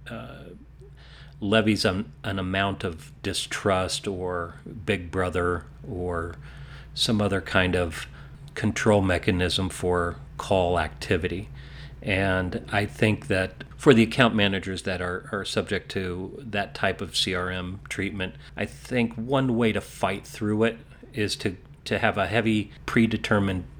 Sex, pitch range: male, 100-135 Hz